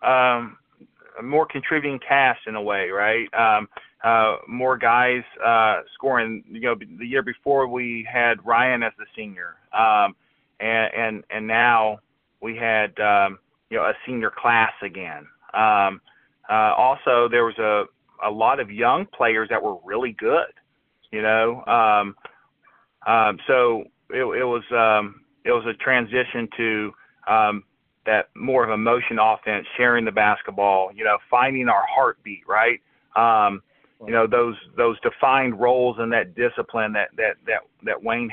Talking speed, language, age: 155 wpm, English, 40-59